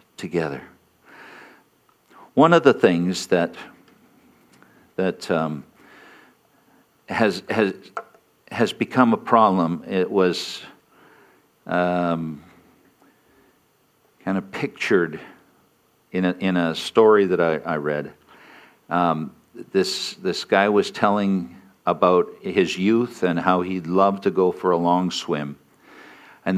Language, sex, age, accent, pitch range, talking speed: English, male, 60-79, American, 90-120 Hz, 105 wpm